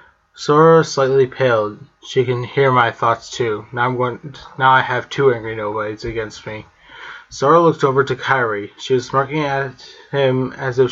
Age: 20-39